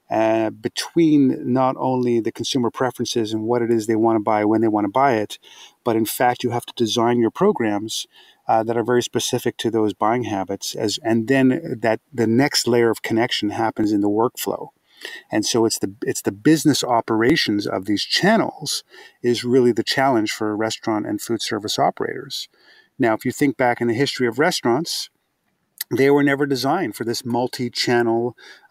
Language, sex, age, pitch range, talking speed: English, male, 40-59, 110-125 Hz, 190 wpm